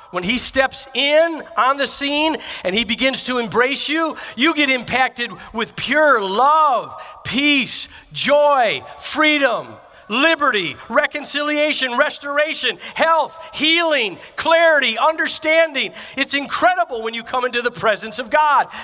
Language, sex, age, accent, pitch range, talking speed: English, male, 50-69, American, 220-290 Hz, 125 wpm